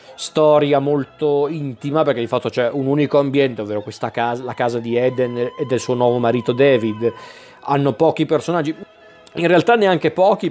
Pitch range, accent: 120-140 Hz, native